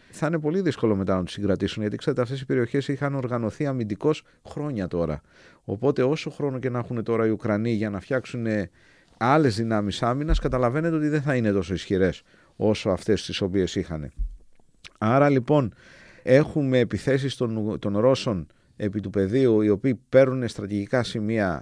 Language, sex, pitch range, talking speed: Greek, male, 100-130 Hz, 165 wpm